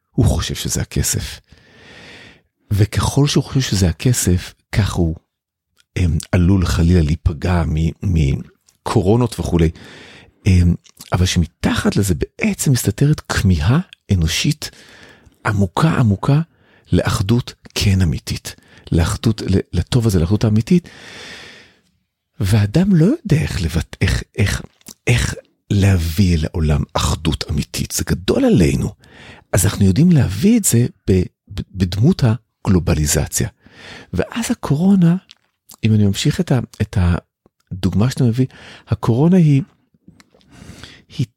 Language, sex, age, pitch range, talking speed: Hebrew, male, 50-69, 90-130 Hz, 100 wpm